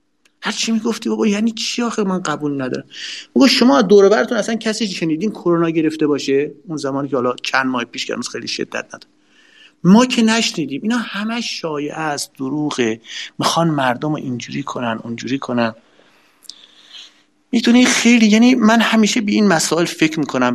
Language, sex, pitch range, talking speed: Persian, male, 135-205 Hz, 160 wpm